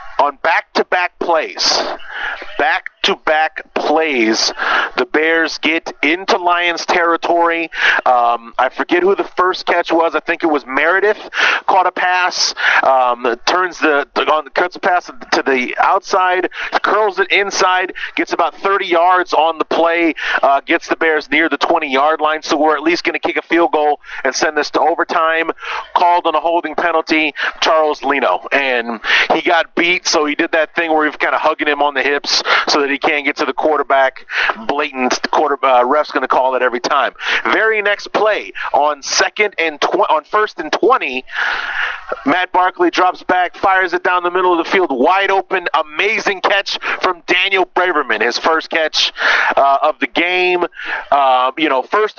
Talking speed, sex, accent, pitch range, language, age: 180 wpm, male, American, 150-180 Hz, English, 40-59